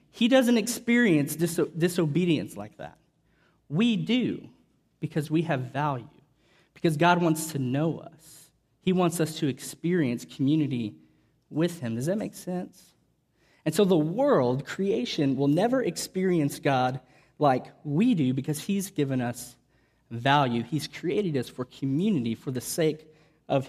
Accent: American